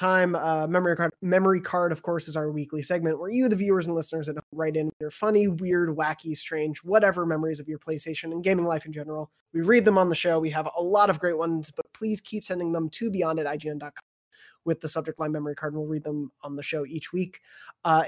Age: 20-39